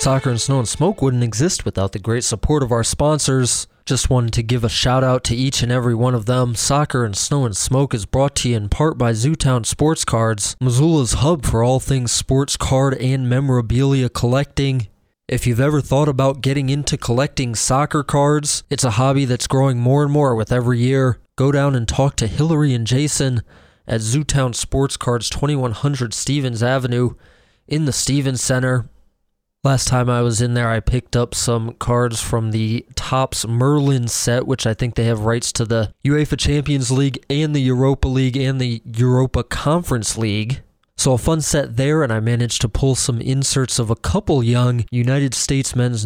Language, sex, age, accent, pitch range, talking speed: English, male, 20-39, American, 120-135 Hz, 195 wpm